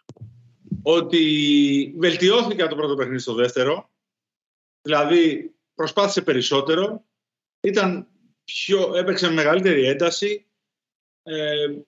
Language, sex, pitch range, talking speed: Greek, male, 140-200 Hz, 90 wpm